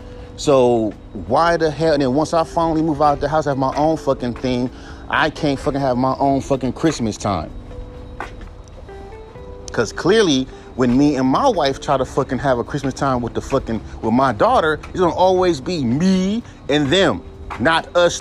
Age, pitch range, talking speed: 30-49, 115-195 Hz, 195 wpm